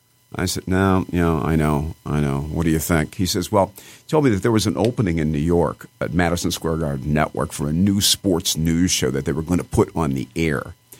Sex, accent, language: male, American, English